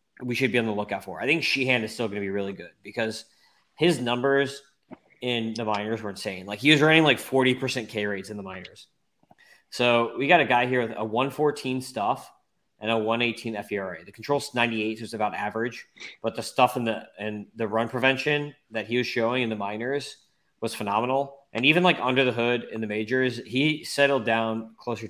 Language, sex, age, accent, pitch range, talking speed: English, male, 20-39, American, 105-125 Hz, 215 wpm